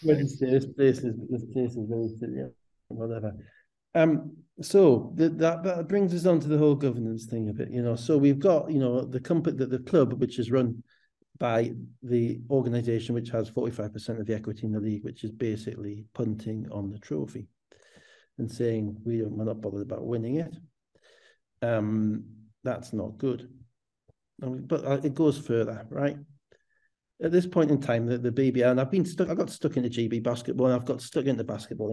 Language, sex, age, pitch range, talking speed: English, male, 50-69, 110-135 Hz, 195 wpm